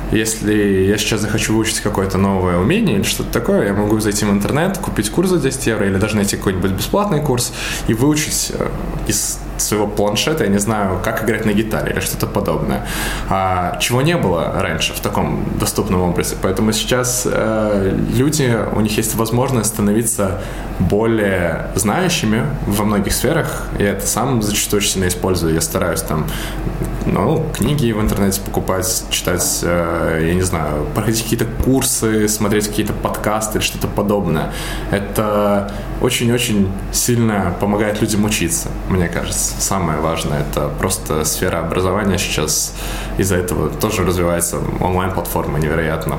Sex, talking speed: male, 145 wpm